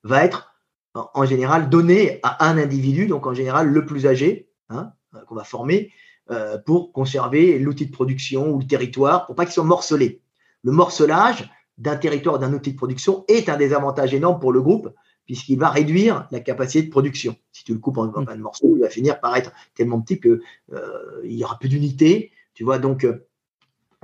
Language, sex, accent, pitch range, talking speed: French, male, French, 130-180 Hz, 195 wpm